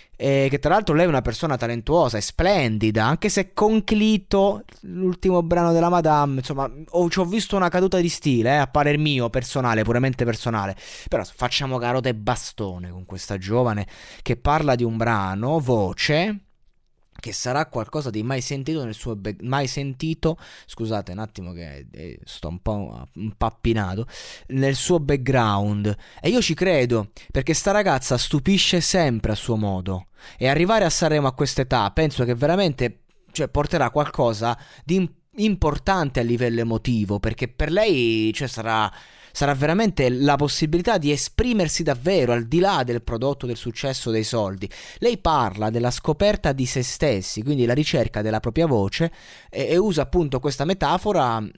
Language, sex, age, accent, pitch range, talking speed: Italian, male, 20-39, native, 110-155 Hz, 160 wpm